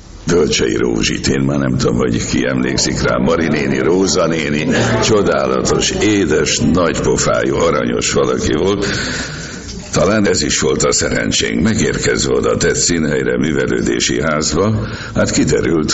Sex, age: male, 60-79